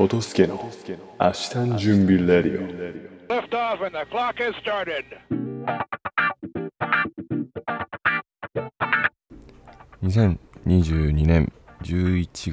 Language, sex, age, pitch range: Japanese, male, 20-39, 75-100 Hz